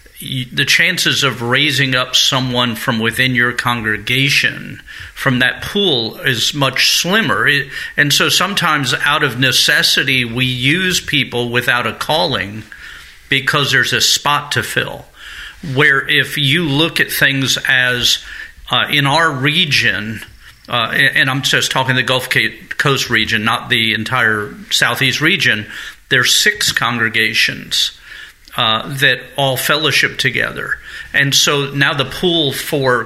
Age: 50-69